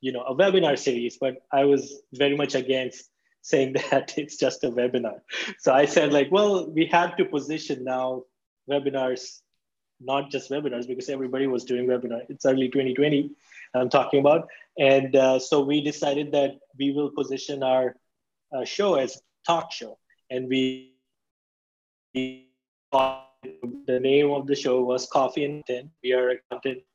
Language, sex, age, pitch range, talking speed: English, male, 20-39, 130-145 Hz, 165 wpm